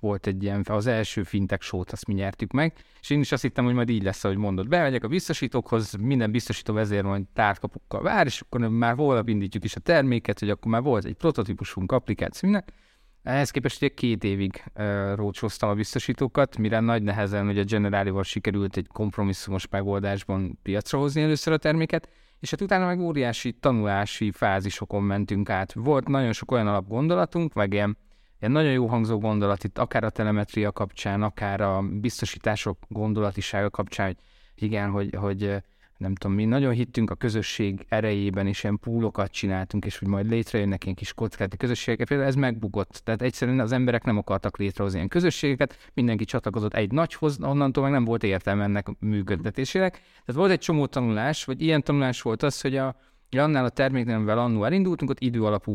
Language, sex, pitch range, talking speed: Hungarian, male, 100-130 Hz, 180 wpm